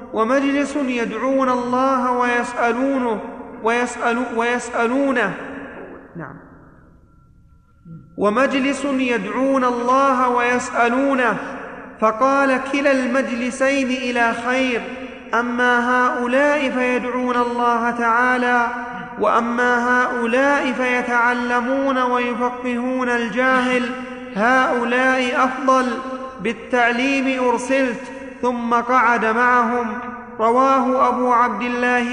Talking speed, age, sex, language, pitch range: 65 wpm, 30-49, male, Arabic, 235-255 Hz